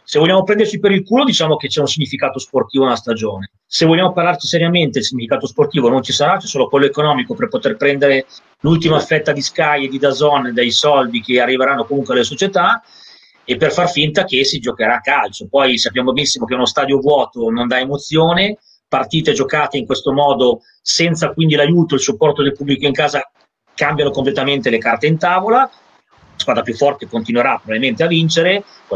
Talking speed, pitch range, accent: 195 wpm, 125-155 Hz, native